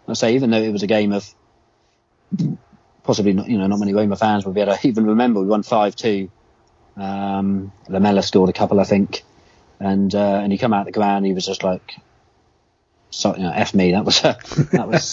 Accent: British